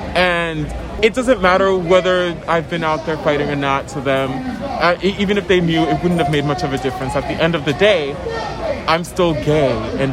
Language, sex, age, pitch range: English, male, 30-49, 145-185 Hz